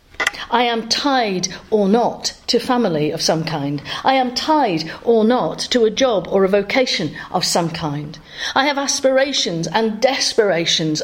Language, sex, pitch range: English, female, 190-285 Hz